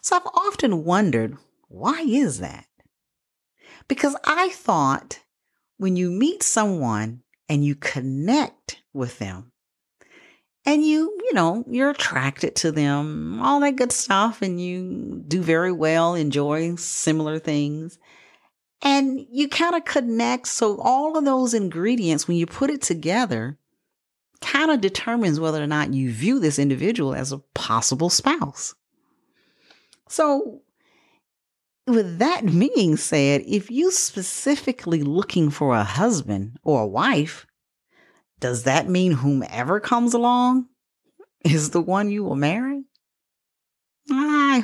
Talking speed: 130 wpm